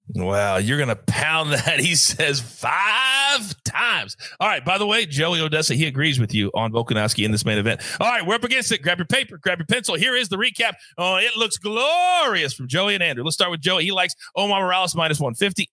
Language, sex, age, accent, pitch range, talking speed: English, male, 30-49, American, 135-205 Hz, 235 wpm